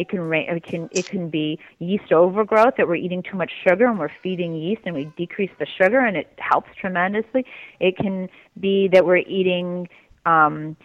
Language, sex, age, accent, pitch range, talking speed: English, female, 30-49, American, 160-210 Hz, 175 wpm